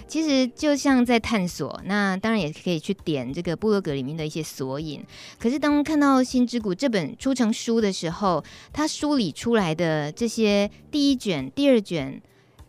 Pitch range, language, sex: 170-240 Hz, Chinese, female